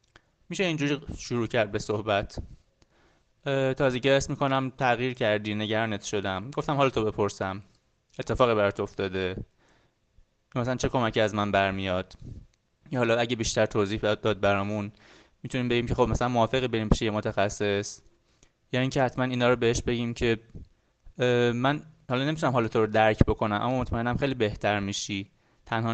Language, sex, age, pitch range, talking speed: Persian, male, 20-39, 105-125 Hz, 155 wpm